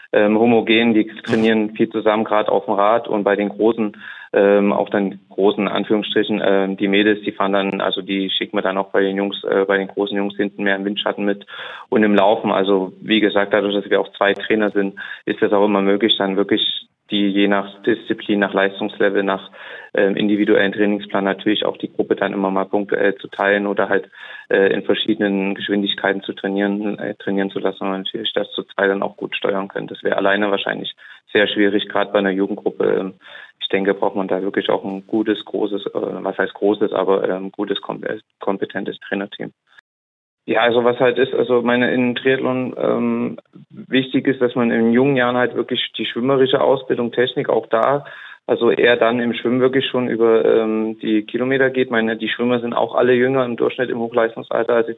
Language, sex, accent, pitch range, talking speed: German, male, German, 100-115 Hz, 205 wpm